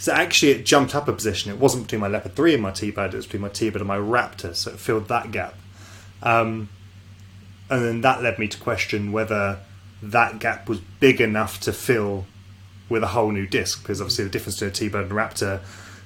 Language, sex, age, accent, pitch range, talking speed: English, male, 20-39, British, 100-115 Hz, 225 wpm